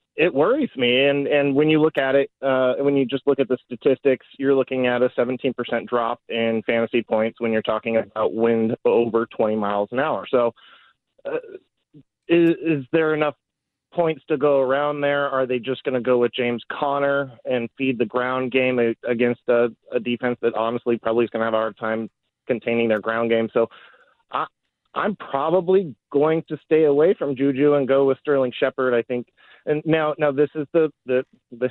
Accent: American